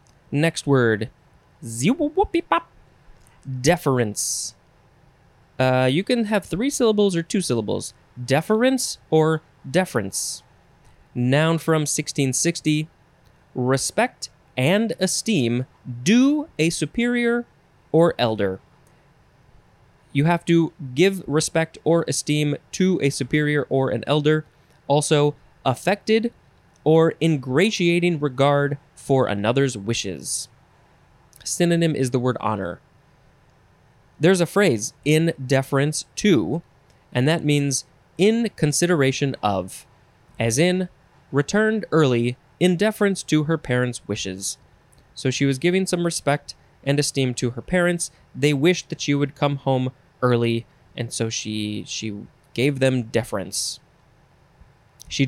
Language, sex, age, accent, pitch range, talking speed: English, male, 20-39, American, 130-170 Hz, 110 wpm